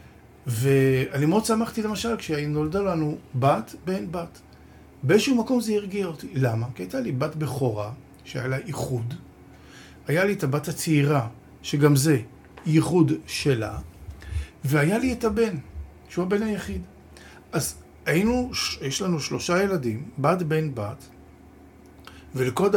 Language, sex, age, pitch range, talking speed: Hebrew, male, 50-69, 120-165 Hz, 130 wpm